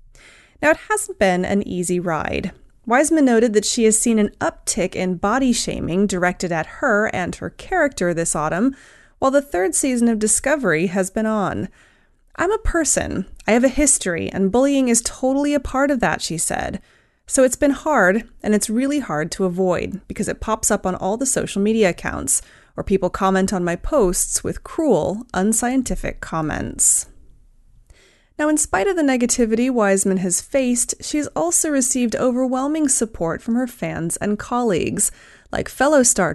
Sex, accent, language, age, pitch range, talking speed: female, American, English, 30-49, 190-275 Hz, 170 wpm